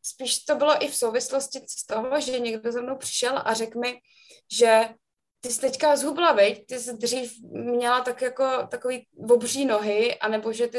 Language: Slovak